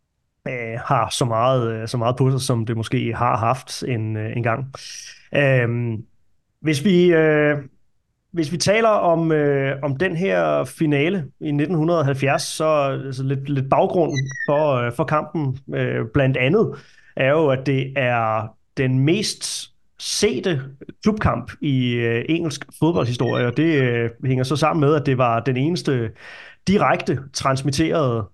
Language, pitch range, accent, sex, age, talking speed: Danish, 120-145 Hz, native, male, 30-49, 145 wpm